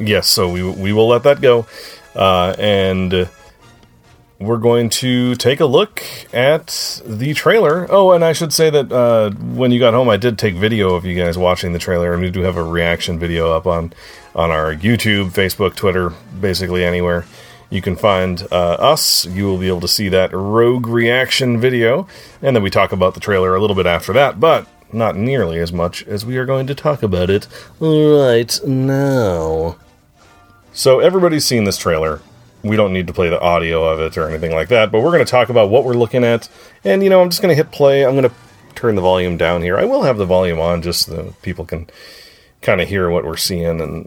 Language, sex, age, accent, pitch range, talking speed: English, male, 30-49, American, 90-120 Hz, 220 wpm